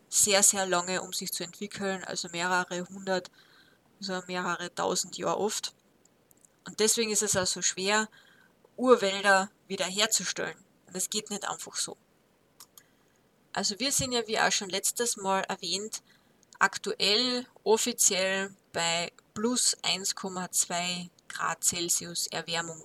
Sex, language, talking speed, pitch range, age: female, German, 125 wpm, 180-220 Hz, 20-39